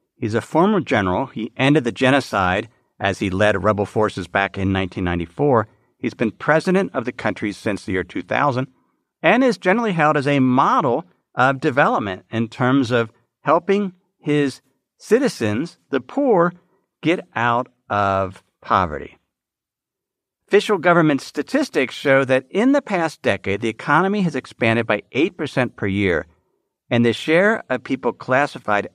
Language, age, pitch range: English, 50-69, 110-155 Hz